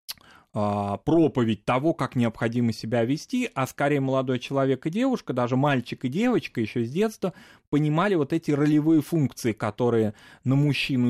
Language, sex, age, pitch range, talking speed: Russian, male, 20-39, 110-140 Hz, 145 wpm